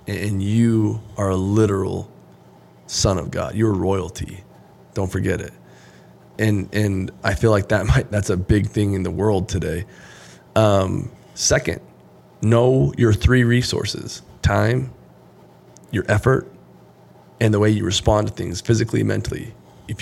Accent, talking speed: American, 140 wpm